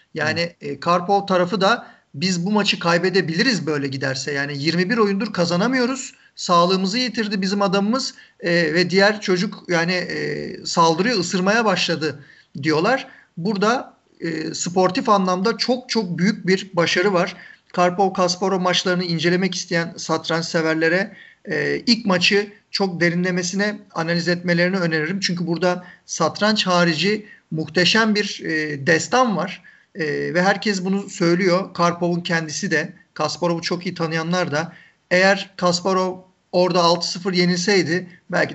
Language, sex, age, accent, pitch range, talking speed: Turkish, male, 50-69, native, 160-195 Hz, 130 wpm